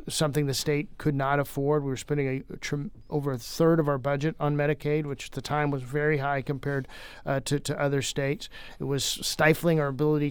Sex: male